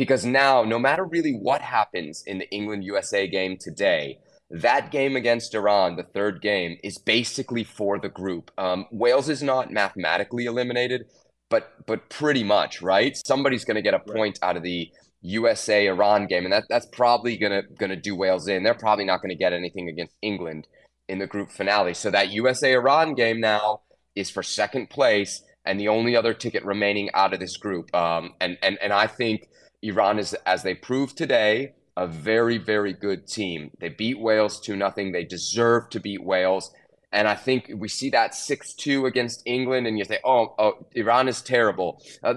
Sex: male